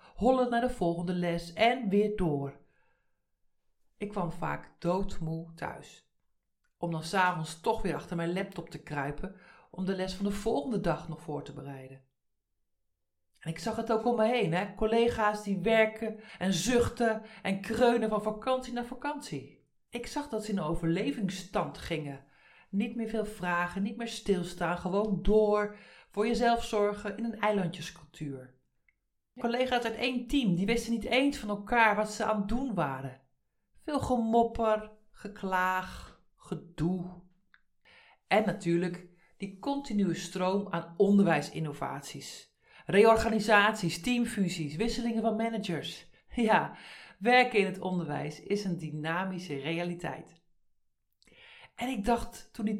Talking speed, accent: 140 wpm, Dutch